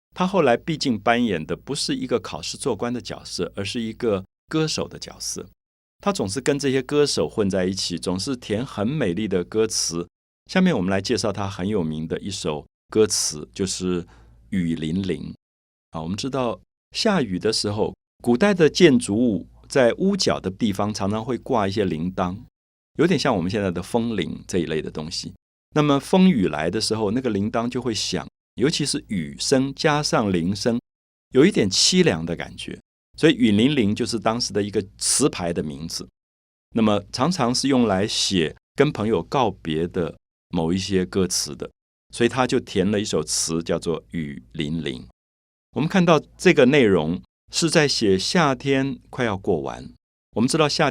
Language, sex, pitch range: Chinese, male, 90-135 Hz